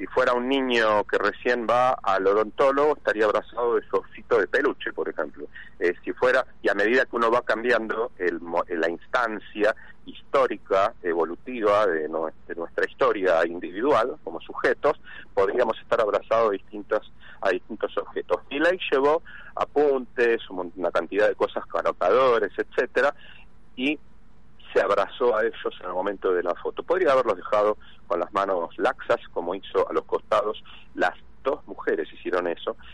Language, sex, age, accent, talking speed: Spanish, male, 40-59, Argentinian, 160 wpm